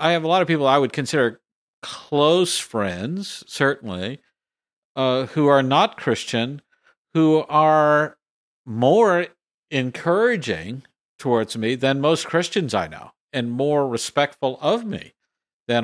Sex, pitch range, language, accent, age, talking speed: male, 125-160 Hz, English, American, 50-69, 130 wpm